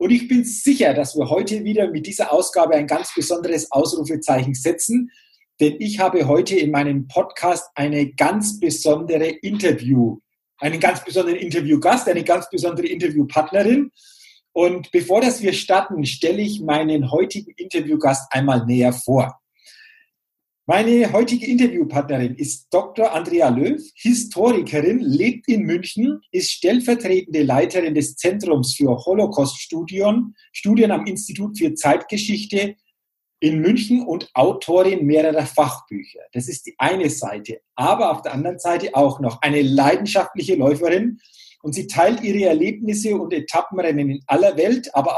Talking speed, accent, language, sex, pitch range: 135 wpm, German, German, male, 150-225 Hz